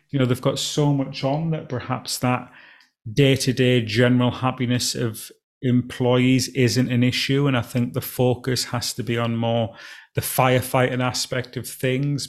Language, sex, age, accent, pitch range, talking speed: English, male, 30-49, British, 115-140 Hz, 160 wpm